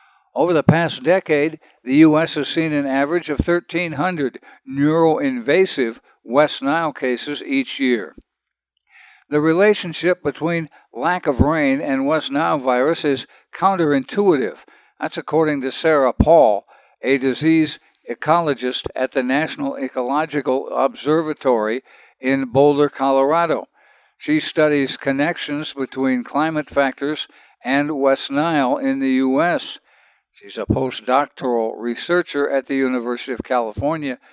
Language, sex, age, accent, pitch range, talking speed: English, male, 60-79, American, 135-175 Hz, 115 wpm